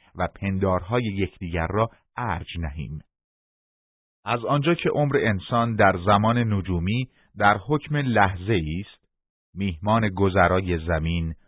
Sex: male